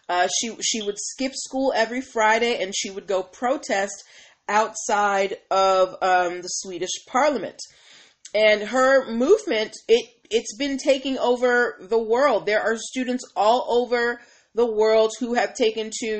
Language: English